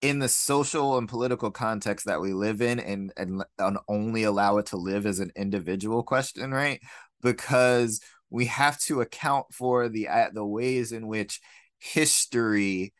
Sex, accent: male, American